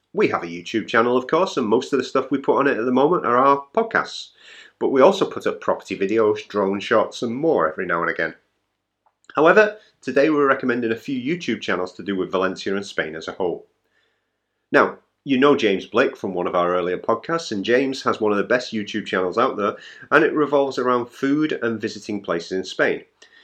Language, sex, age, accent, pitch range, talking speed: English, male, 30-49, British, 105-160 Hz, 220 wpm